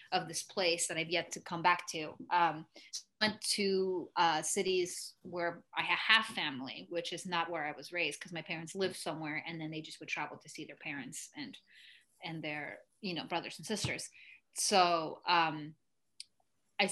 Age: 20-39